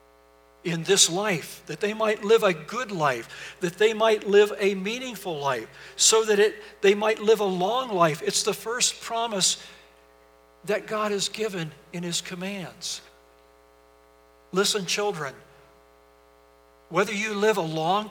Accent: American